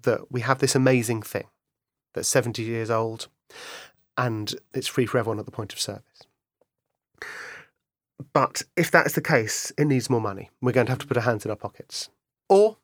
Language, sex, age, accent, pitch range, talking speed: English, male, 30-49, British, 120-140 Hz, 195 wpm